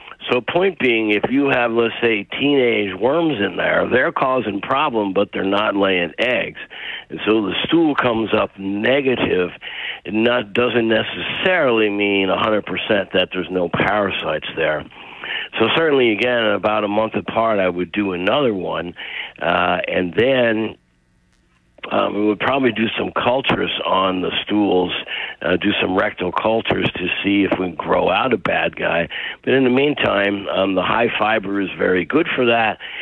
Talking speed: 165 wpm